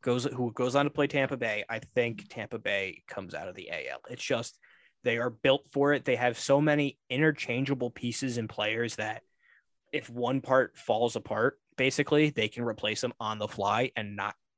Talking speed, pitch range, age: 200 wpm, 115-140 Hz, 20-39